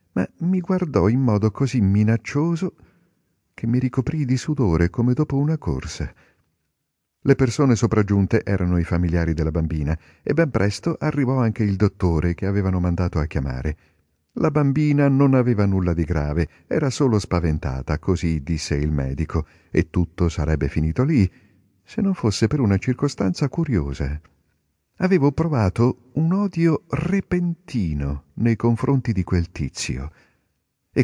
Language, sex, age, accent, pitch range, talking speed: Italian, male, 50-69, native, 80-130 Hz, 140 wpm